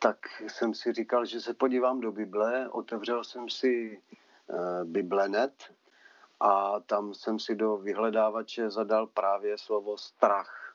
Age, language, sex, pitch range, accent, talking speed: 40-59, Czech, male, 100-125 Hz, native, 130 wpm